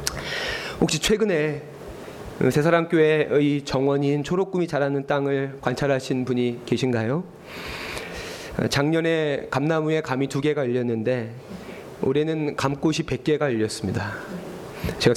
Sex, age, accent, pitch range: male, 40-59, native, 135-165 Hz